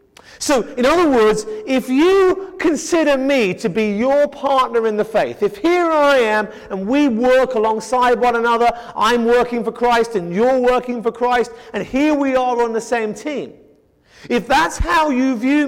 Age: 40-59